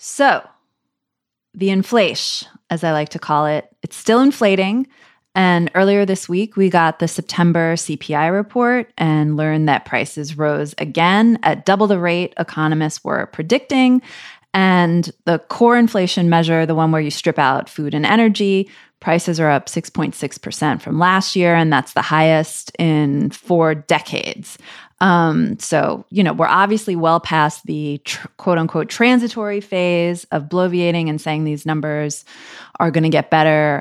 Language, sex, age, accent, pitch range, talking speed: English, female, 20-39, American, 155-195 Hz, 155 wpm